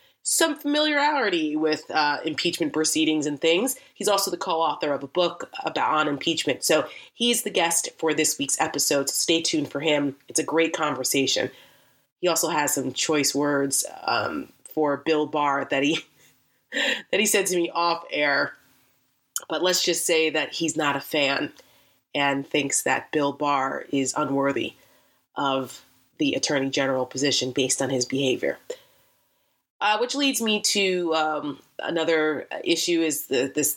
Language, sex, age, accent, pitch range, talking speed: English, female, 30-49, American, 145-170 Hz, 160 wpm